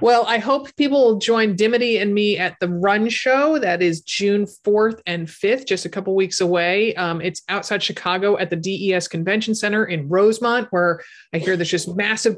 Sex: male